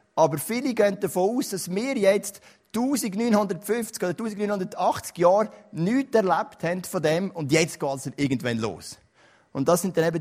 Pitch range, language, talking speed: 145-180 Hz, German, 165 wpm